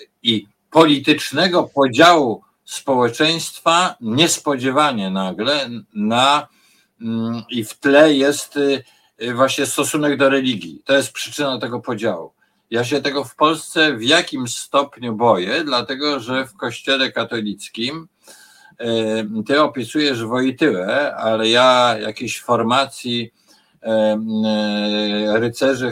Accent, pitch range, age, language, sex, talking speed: native, 110-140 Hz, 50-69, Polish, male, 95 wpm